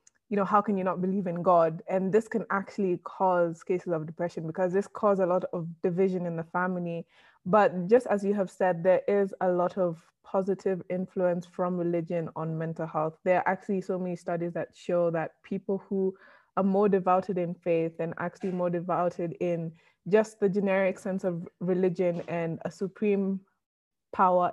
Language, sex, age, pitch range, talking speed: English, female, 20-39, 175-200 Hz, 185 wpm